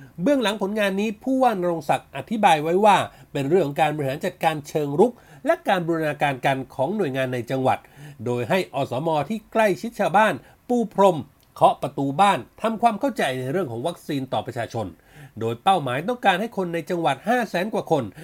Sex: male